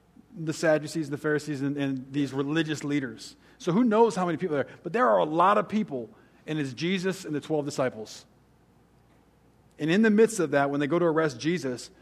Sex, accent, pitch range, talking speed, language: male, American, 125-155 Hz, 210 wpm, English